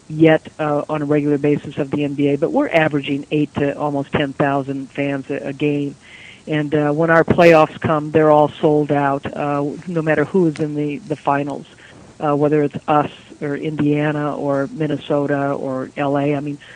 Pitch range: 145-155 Hz